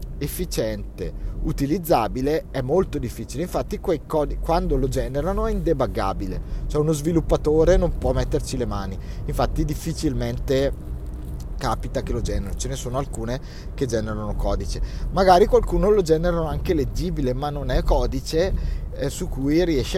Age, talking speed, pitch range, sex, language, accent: 30-49, 145 wpm, 100-155 Hz, male, Italian, native